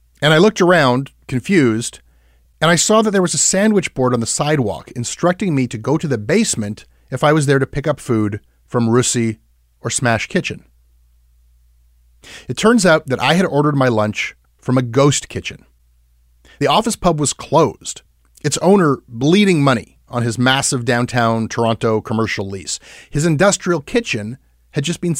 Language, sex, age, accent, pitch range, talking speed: English, male, 30-49, American, 105-160 Hz, 170 wpm